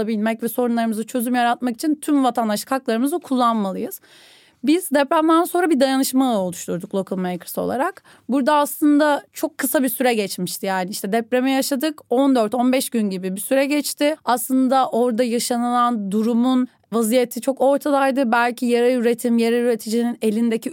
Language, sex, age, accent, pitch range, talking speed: Turkish, female, 30-49, native, 215-270 Hz, 140 wpm